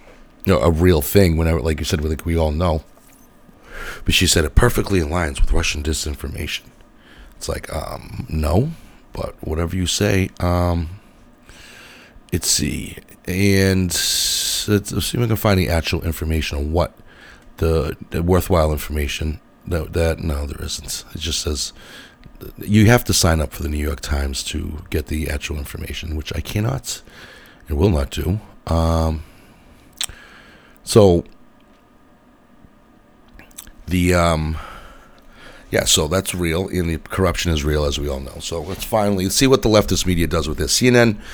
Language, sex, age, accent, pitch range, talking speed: English, male, 40-59, American, 80-95 Hz, 155 wpm